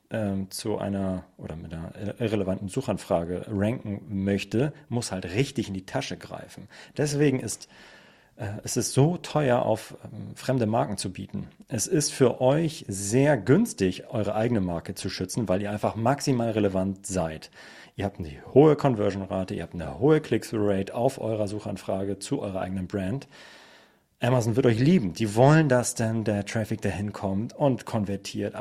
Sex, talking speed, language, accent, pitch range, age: male, 170 wpm, German, German, 100-125 Hz, 40-59